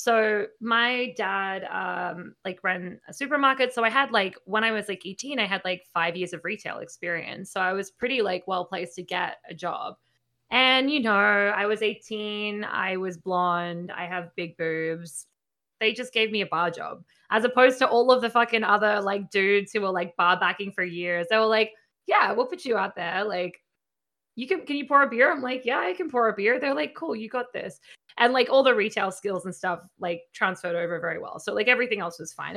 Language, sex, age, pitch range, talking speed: English, female, 20-39, 180-250 Hz, 225 wpm